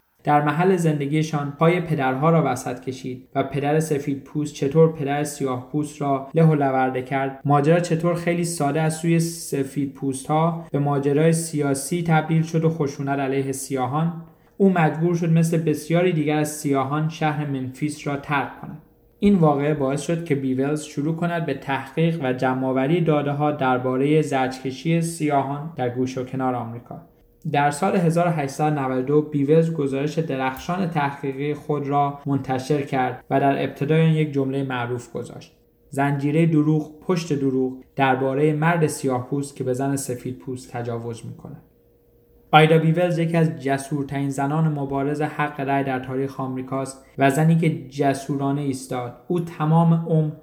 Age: 20-39